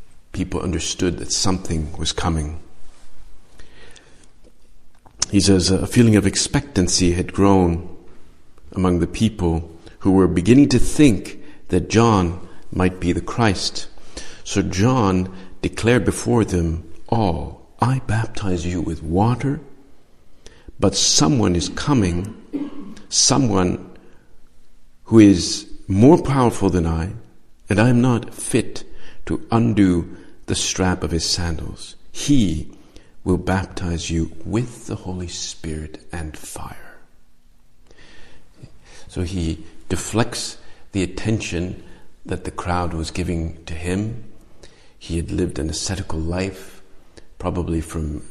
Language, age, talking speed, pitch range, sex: English, 50-69, 115 wpm, 85-100 Hz, male